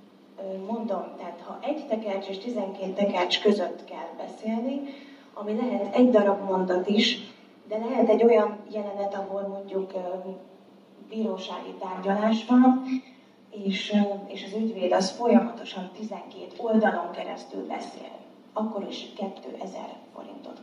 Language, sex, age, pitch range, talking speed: Hungarian, female, 30-49, 205-245 Hz, 115 wpm